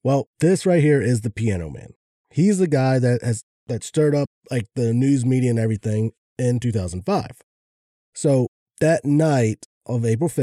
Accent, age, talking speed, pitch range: American, 30-49, 165 wpm, 115-150 Hz